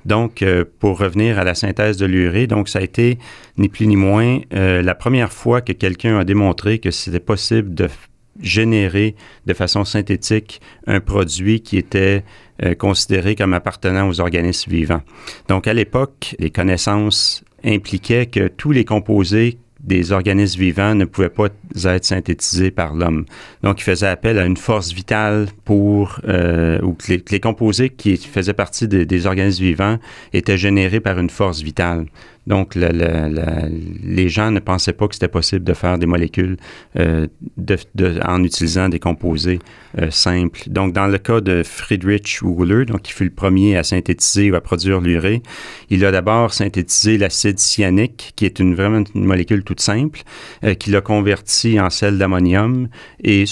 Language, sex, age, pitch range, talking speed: French, male, 40-59, 90-105 Hz, 175 wpm